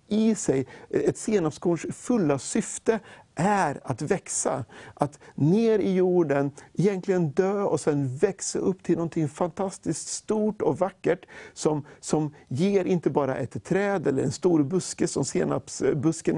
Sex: male